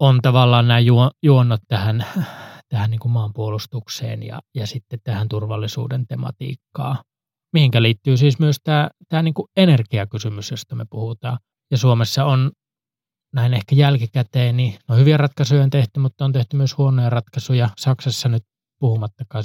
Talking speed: 145 wpm